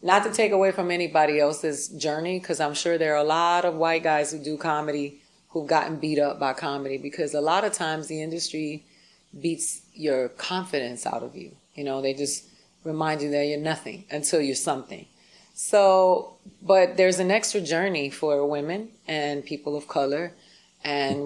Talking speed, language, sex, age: 185 wpm, English, female, 30-49